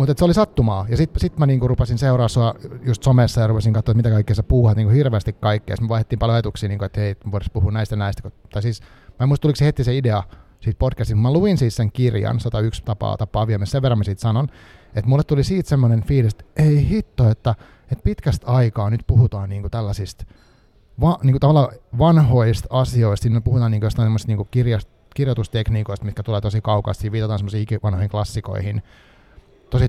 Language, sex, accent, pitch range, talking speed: Finnish, male, native, 105-140 Hz, 185 wpm